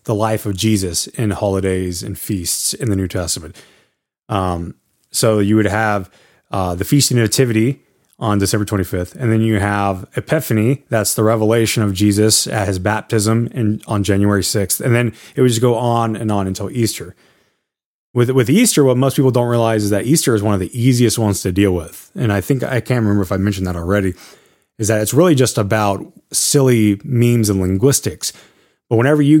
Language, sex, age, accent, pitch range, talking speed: English, male, 20-39, American, 100-125 Hz, 200 wpm